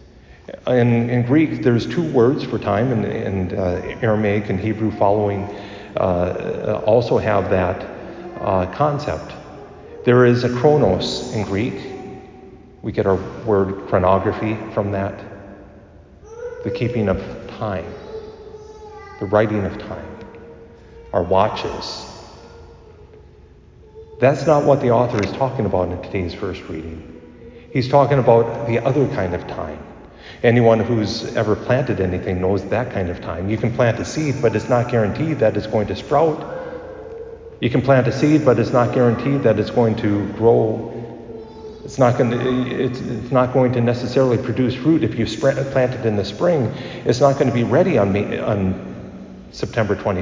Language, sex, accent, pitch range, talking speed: English, male, American, 100-130 Hz, 150 wpm